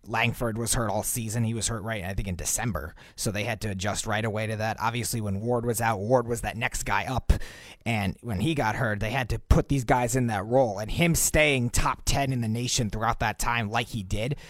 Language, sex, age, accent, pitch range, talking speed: English, male, 30-49, American, 110-135 Hz, 255 wpm